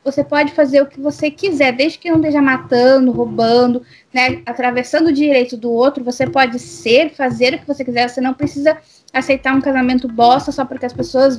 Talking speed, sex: 200 wpm, female